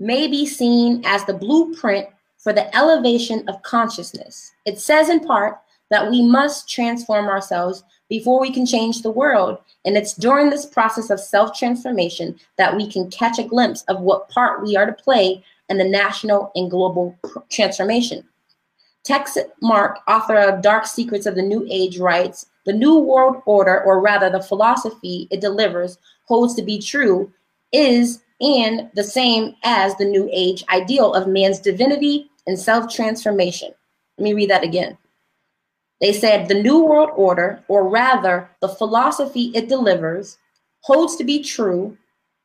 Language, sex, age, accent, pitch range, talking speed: English, female, 20-39, American, 195-240 Hz, 160 wpm